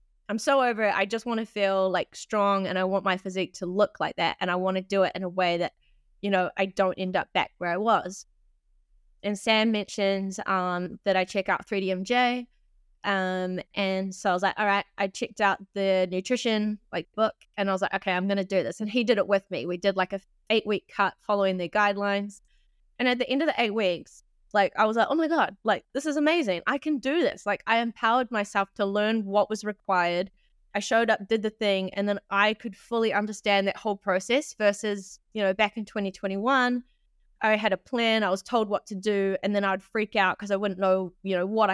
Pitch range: 190-220 Hz